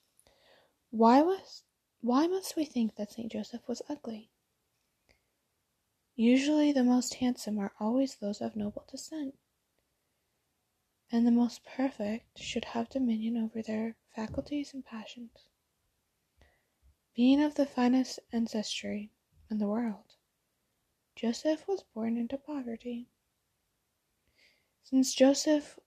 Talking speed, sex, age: 110 wpm, female, 20-39